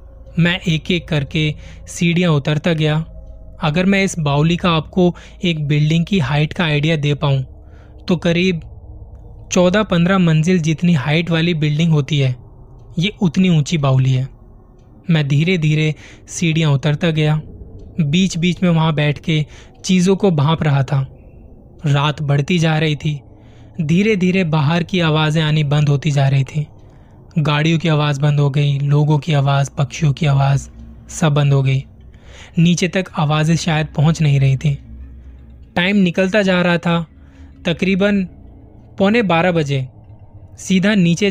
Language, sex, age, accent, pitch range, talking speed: Hindi, male, 20-39, native, 135-170 Hz, 150 wpm